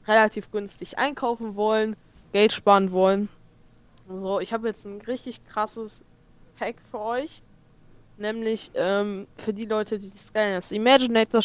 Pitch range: 185-220 Hz